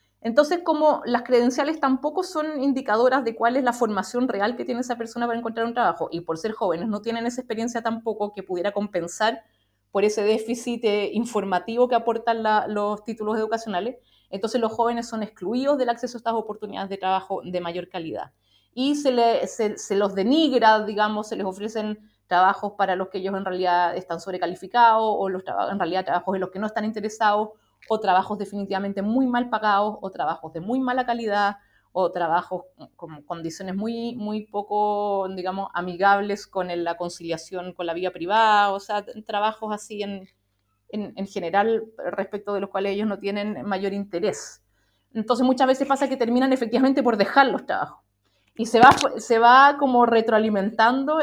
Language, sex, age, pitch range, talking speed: Spanish, female, 30-49, 195-235 Hz, 175 wpm